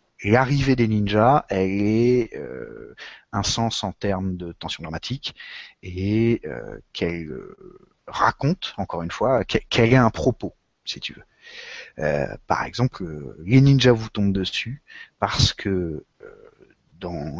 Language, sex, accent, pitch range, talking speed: French, male, French, 100-130 Hz, 140 wpm